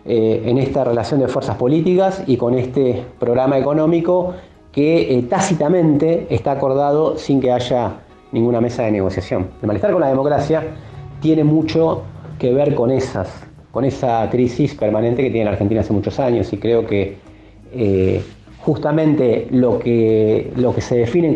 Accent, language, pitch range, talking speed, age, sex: Argentinian, Spanish, 115-145 Hz, 155 wpm, 30-49, male